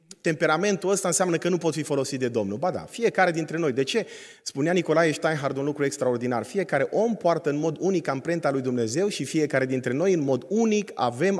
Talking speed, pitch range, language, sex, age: 210 wpm, 140-200 Hz, Romanian, male, 30-49